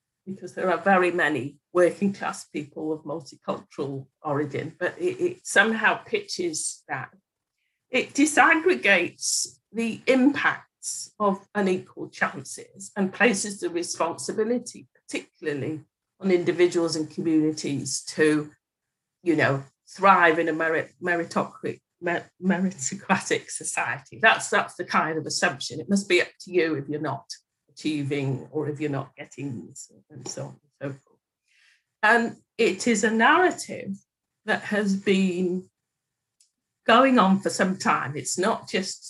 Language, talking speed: English, 125 wpm